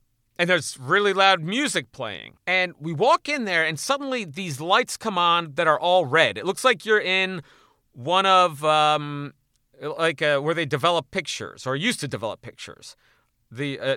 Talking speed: 175 wpm